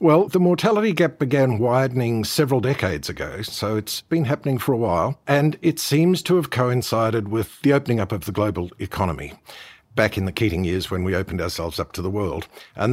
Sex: male